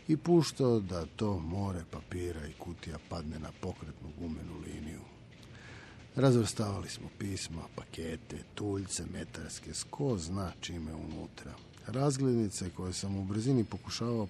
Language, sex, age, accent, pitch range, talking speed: Croatian, male, 50-69, native, 85-125 Hz, 120 wpm